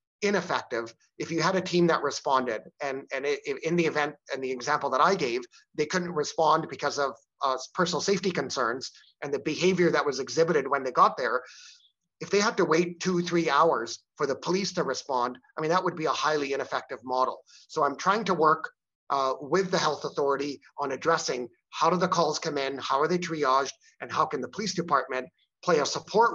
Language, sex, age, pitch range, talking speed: English, male, 30-49, 135-170 Hz, 210 wpm